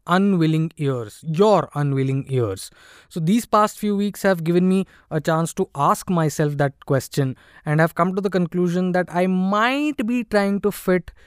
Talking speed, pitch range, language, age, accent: 175 wpm, 150-195 Hz, English, 20-39, Indian